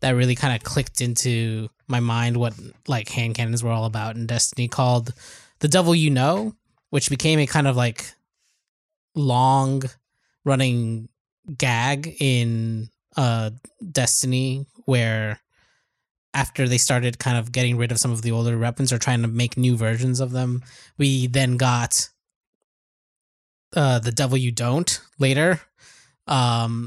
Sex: male